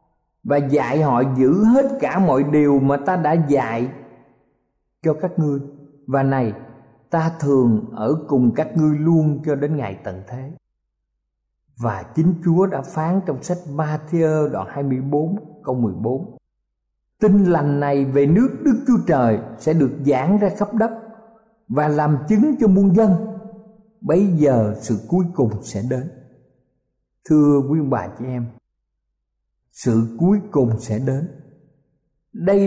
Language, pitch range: Vietnamese, 125-180 Hz